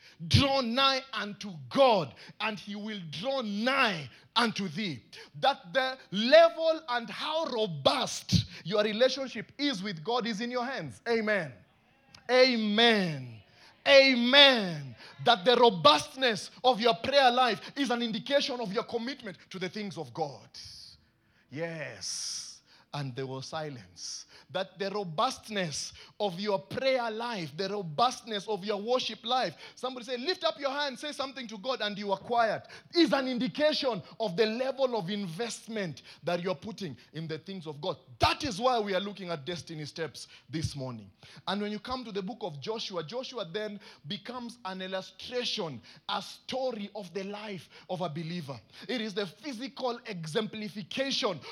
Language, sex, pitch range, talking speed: English, male, 175-250 Hz, 155 wpm